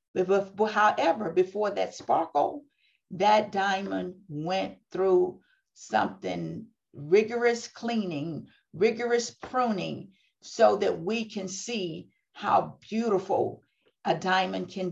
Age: 50-69